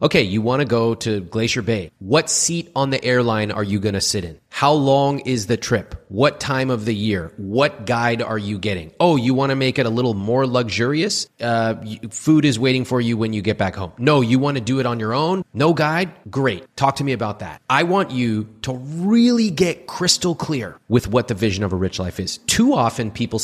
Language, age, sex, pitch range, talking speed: English, 30-49, male, 105-140 Hz, 235 wpm